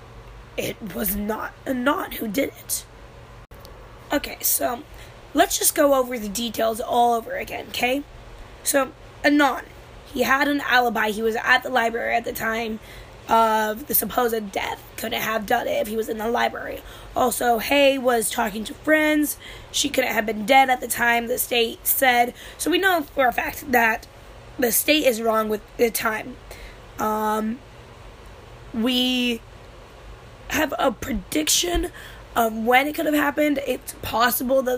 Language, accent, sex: English, American, female